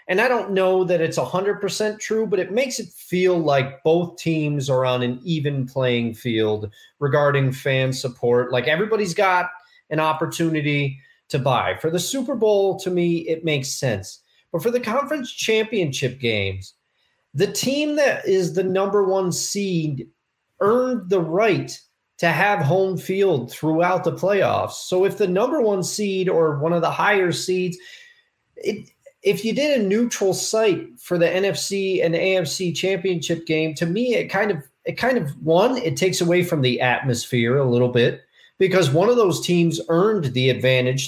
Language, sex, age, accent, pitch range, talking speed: English, male, 30-49, American, 135-190 Hz, 170 wpm